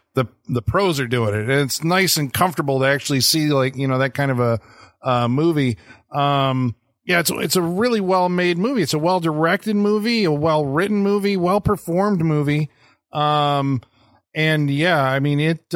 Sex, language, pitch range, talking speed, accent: male, English, 135-185 Hz, 190 wpm, American